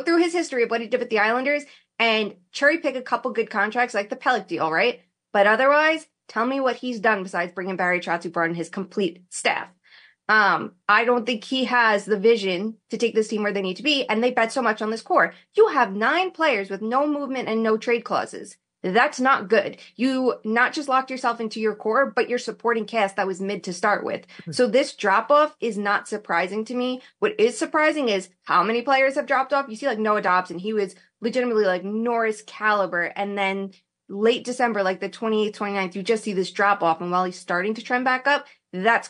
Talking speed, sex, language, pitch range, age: 225 wpm, female, English, 200-250 Hz, 20-39